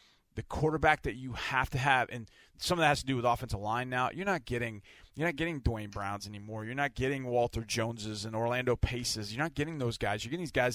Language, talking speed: English, 245 wpm